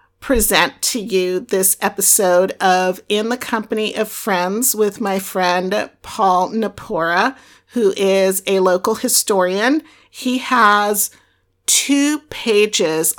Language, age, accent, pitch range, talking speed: English, 50-69, American, 185-220 Hz, 115 wpm